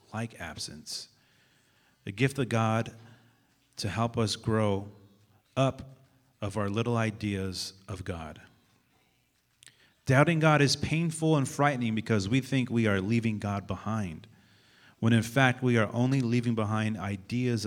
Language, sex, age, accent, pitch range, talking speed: English, male, 30-49, American, 100-125 Hz, 135 wpm